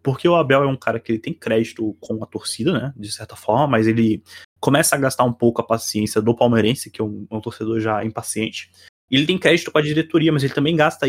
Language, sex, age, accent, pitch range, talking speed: Portuguese, male, 20-39, Brazilian, 110-140 Hz, 245 wpm